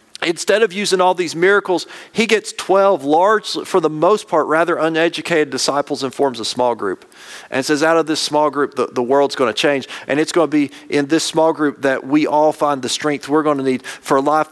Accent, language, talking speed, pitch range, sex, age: American, English, 235 wpm, 130-155 Hz, male, 40-59